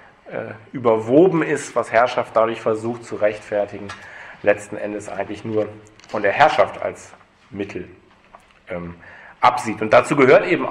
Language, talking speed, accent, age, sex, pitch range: German, 130 wpm, German, 40-59, male, 110-130 Hz